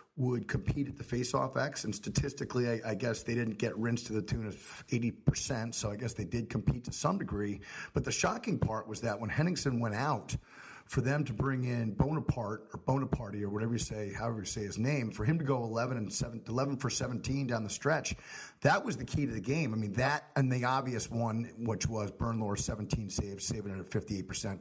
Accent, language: American, English